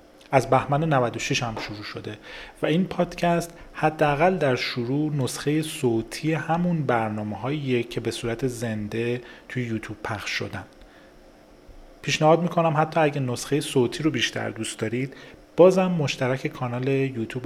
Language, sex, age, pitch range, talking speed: Persian, male, 30-49, 115-145 Hz, 130 wpm